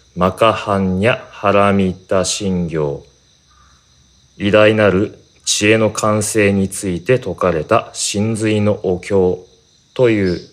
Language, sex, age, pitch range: Japanese, male, 40-59, 85-110 Hz